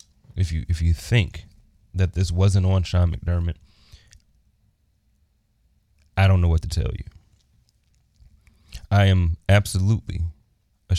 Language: English